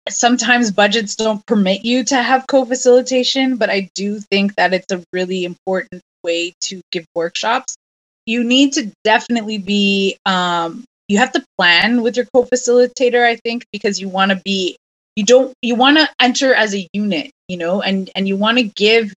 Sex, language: female, English